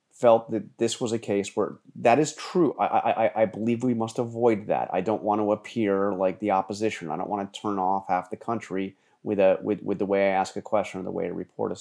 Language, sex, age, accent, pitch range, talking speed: English, male, 30-49, American, 95-115 Hz, 260 wpm